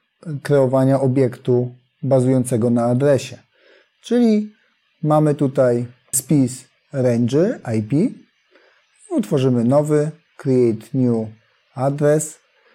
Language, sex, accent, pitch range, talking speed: Polish, male, native, 120-155 Hz, 75 wpm